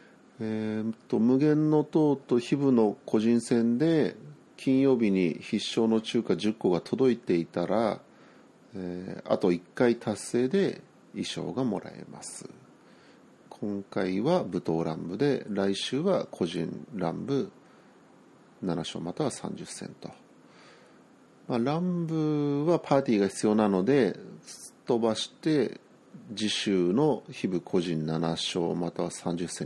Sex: male